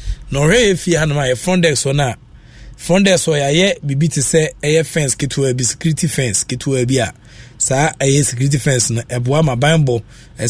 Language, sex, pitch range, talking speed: English, male, 120-165 Hz, 105 wpm